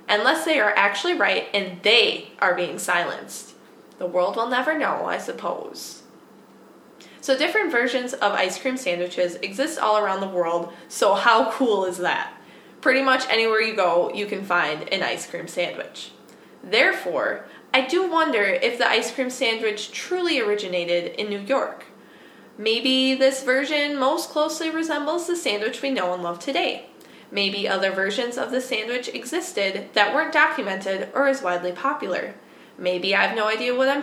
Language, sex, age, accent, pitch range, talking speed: English, female, 20-39, American, 190-280 Hz, 165 wpm